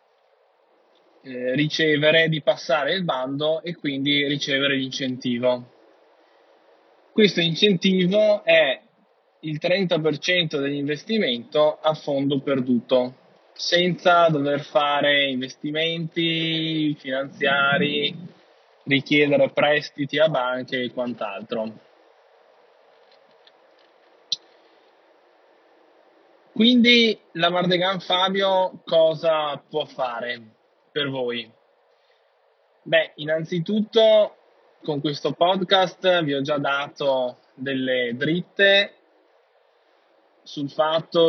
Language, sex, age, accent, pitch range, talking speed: Italian, male, 20-39, native, 130-175 Hz, 75 wpm